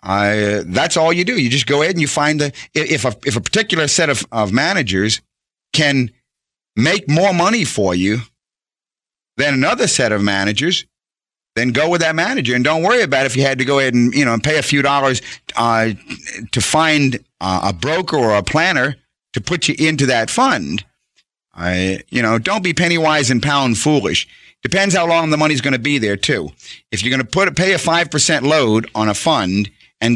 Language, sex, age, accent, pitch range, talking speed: English, male, 50-69, American, 115-155 Hz, 210 wpm